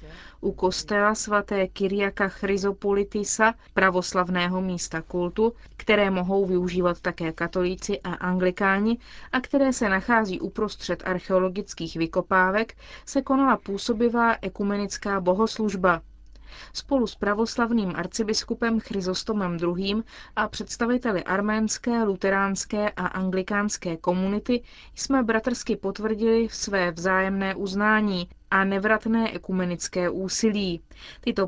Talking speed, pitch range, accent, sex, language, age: 100 wpm, 180-220 Hz, native, female, Czech, 30-49